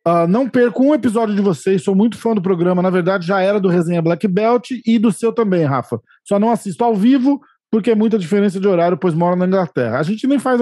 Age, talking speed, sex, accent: 40-59, 250 wpm, male, Brazilian